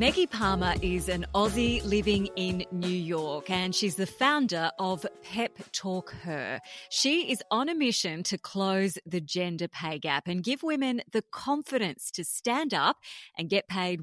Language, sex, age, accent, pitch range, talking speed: English, female, 30-49, Australian, 170-225 Hz, 165 wpm